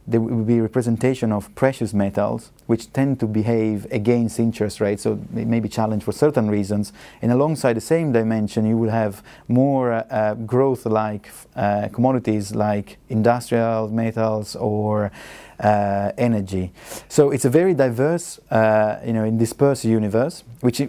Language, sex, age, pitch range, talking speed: English, male, 30-49, 110-135 Hz, 145 wpm